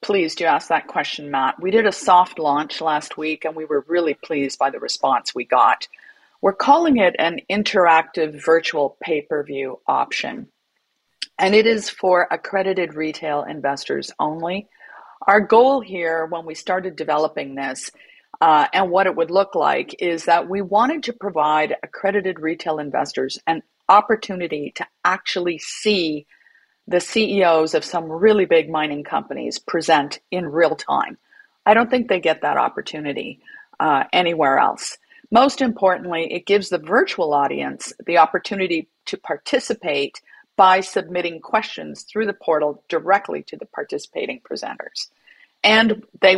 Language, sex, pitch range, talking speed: English, female, 160-205 Hz, 145 wpm